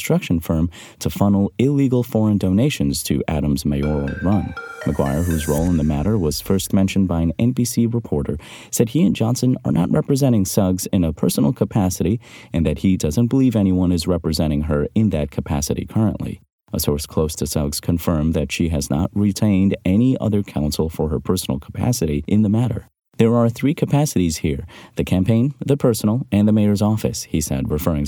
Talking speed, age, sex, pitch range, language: 185 wpm, 30-49, male, 80-110 Hz, English